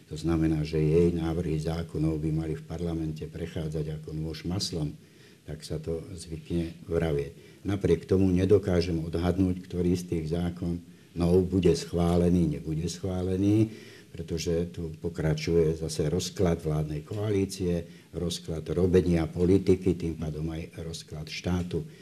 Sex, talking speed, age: male, 130 wpm, 60-79